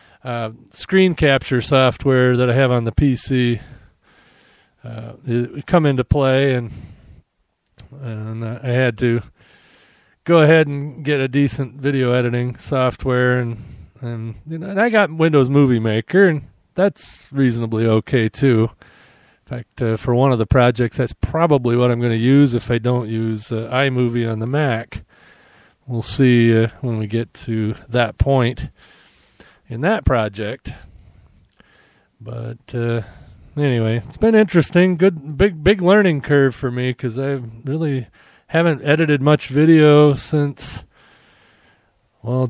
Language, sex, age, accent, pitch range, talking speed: English, male, 40-59, American, 115-145 Hz, 145 wpm